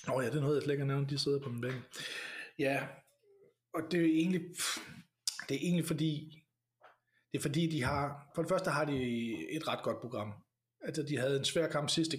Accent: native